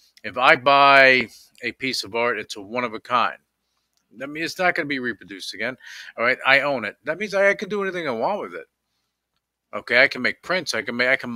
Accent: American